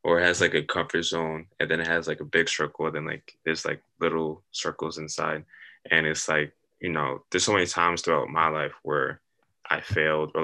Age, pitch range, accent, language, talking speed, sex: 20-39, 80-85 Hz, American, English, 220 wpm, male